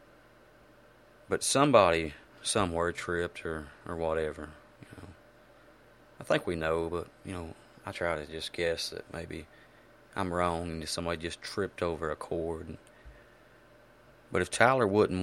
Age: 30-49